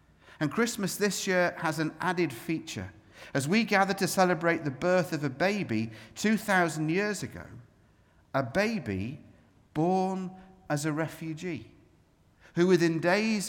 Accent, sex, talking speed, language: British, male, 135 wpm, English